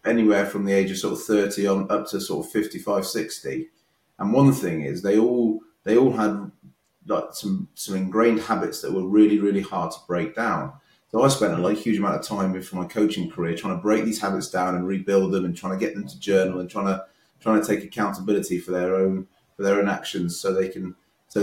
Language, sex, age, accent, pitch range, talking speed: English, male, 30-49, British, 95-110 Hz, 235 wpm